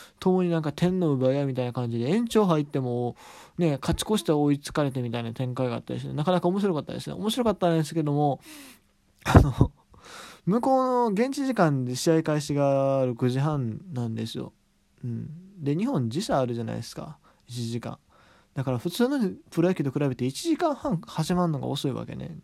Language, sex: Japanese, male